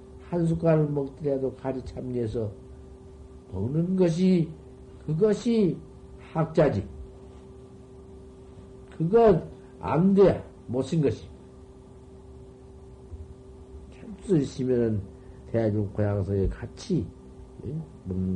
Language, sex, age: Korean, male, 50-69